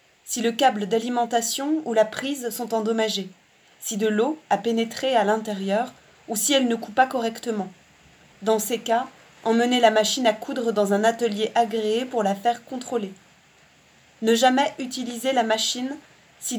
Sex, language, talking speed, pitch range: female, French, 165 wpm, 220-265 Hz